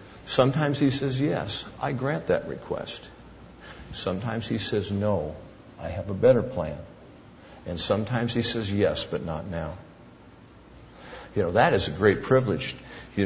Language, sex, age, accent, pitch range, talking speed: English, male, 50-69, American, 100-125 Hz, 150 wpm